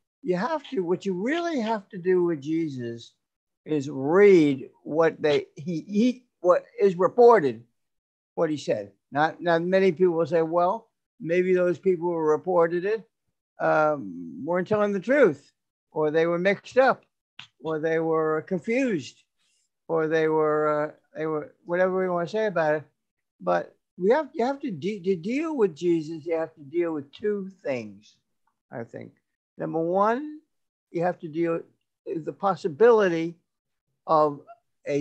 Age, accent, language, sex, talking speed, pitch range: 60-79, American, English, male, 160 wpm, 150-200 Hz